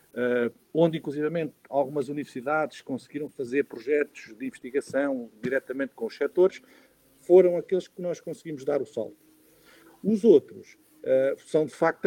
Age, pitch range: 50-69, 130-190 Hz